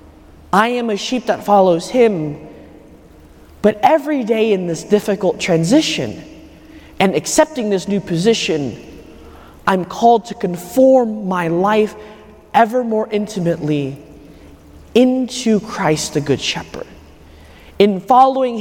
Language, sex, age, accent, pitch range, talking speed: English, male, 30-49, American, 150-220 Hz, 115 wpm